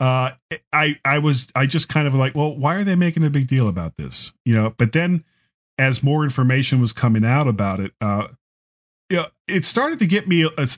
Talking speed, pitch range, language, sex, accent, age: 225 wpm, 110-145 Hz, English, male, American, 40-59